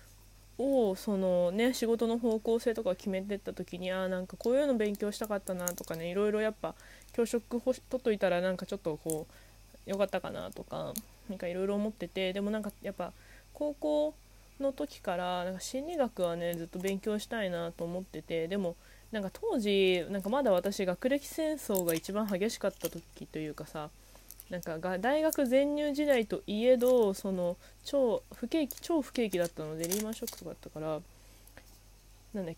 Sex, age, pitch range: female, 20-39, 175-230 Hz